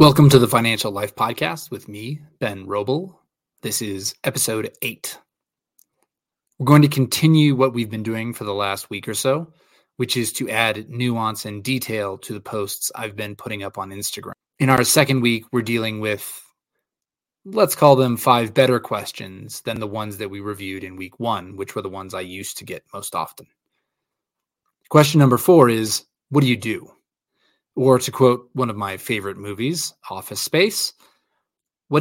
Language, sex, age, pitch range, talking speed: English, male, 20-39, 105-145 Hz, 180 wpm